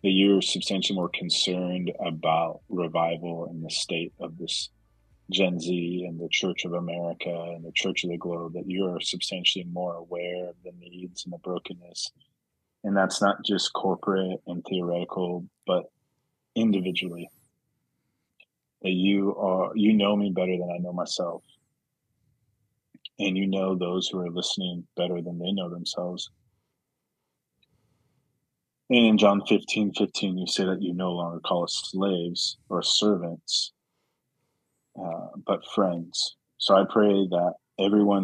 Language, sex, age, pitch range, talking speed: English, male, 30-49, 85-100 Hz, 145 wpm